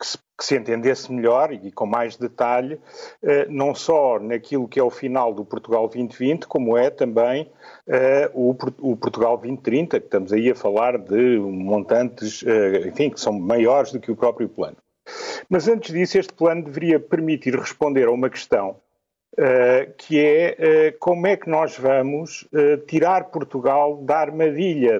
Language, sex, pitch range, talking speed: Portuguese, male, 130-185 Hz, 155 wpm